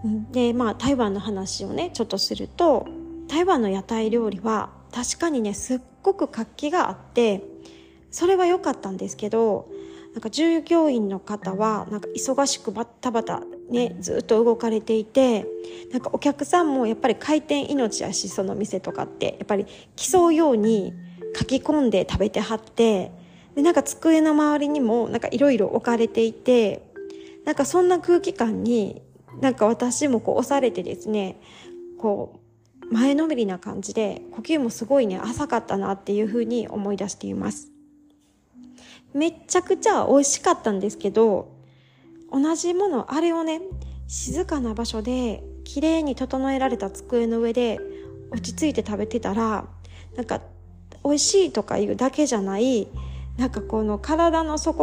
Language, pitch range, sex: Japanese, 205-295 Hz, female